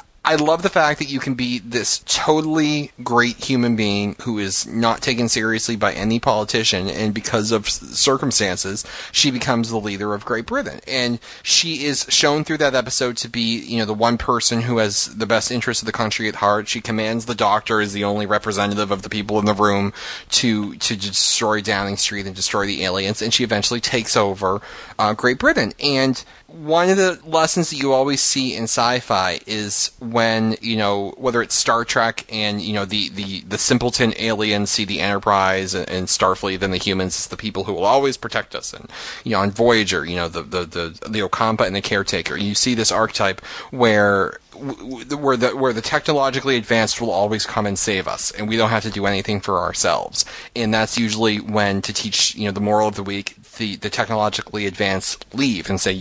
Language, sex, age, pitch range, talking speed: English, male, 30-49, 100-120 Hz, 205 wpm